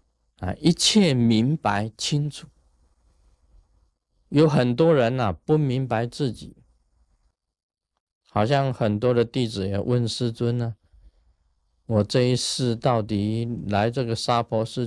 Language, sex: Chinese, male